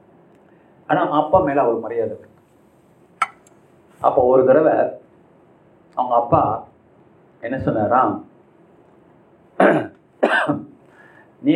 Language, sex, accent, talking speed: Tamil, male, native, 75 wpm